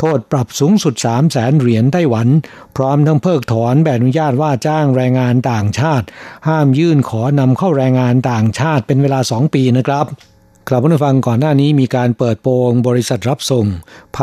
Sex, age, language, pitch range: male, 60-79, Thai, 120-145 Hz